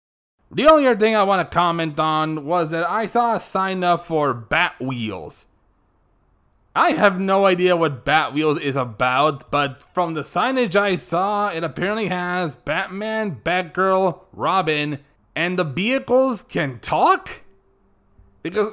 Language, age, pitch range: English, 20-39, 160-225 Hz